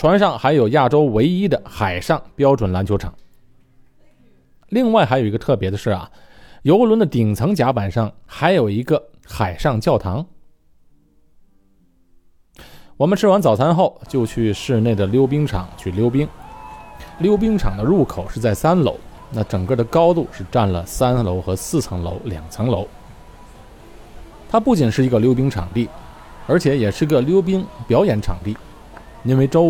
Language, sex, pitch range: Chinese, male, 95-135 Hz